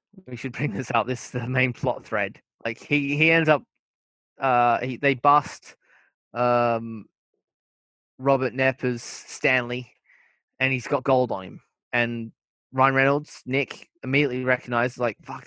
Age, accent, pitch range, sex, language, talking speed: 20-39, Australian, 120-135 Hz, male, English, 145 wpm